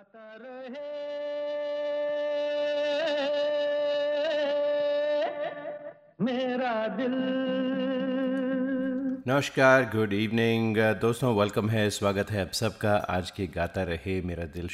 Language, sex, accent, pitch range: Hindi, male, native, 95-130 Hz